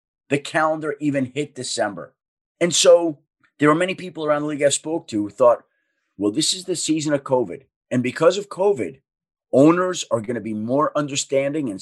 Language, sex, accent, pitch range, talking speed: English, male, American, 135-185 Hz, 195 wpm